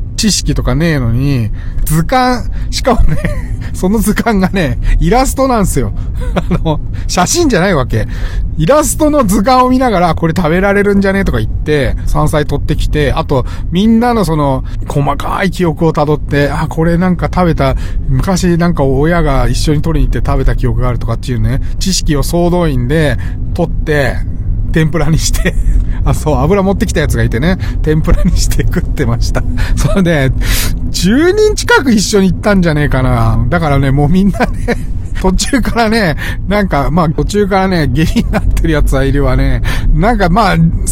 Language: Japanese